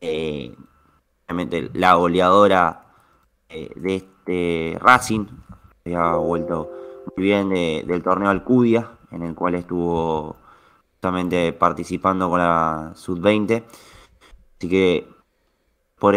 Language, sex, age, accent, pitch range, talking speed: Spanish, male, 20-39, Argentinian, 90-115 Hz, 110 wpm